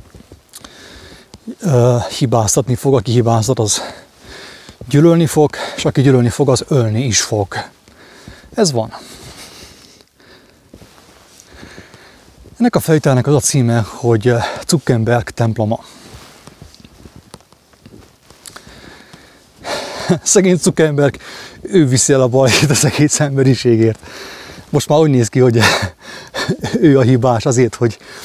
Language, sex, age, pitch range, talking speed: English, male, 30-49, 120-140 Hz, 100 wpm